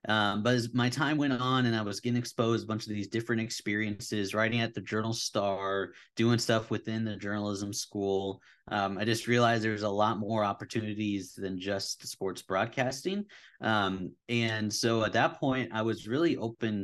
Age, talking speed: 30-49, 190 wpm